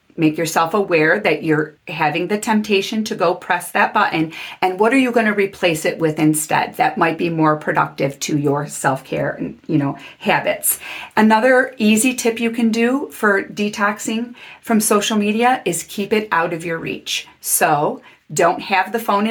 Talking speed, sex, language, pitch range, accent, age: 175 wpm, female, English, 155-210 Hz, American, 40-59